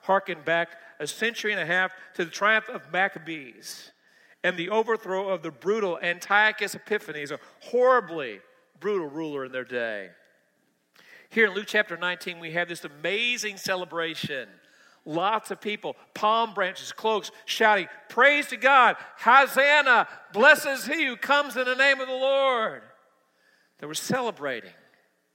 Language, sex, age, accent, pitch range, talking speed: English, male, 50-69, American, 185-250 Hz, 145 wpm